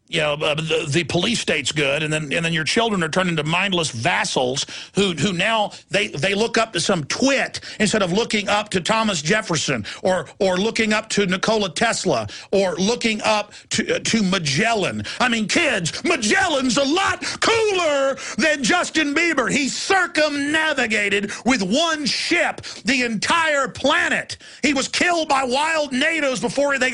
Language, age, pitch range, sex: Thai, 50-69, 210-315 Hz, male